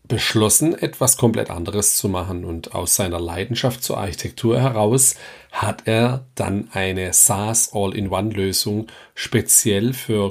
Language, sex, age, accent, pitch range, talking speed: German, male, 40-59, German, 100-120 Hz, 115 wpm